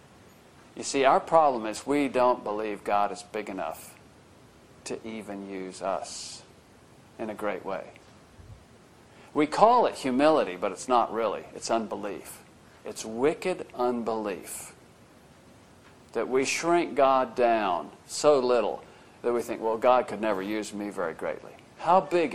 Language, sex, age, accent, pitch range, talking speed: English, male, 50-69, American, 110-135 Hz, 140 wpm